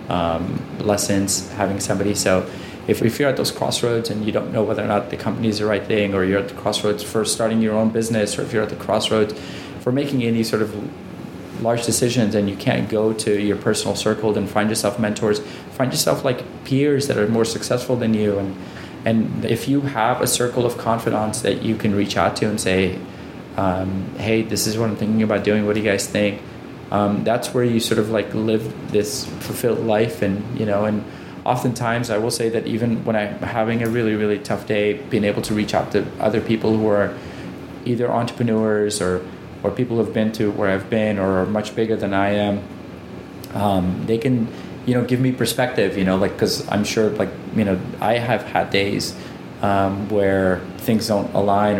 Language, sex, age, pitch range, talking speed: English, male, 20-39, 100-115 Hz, 215 wpm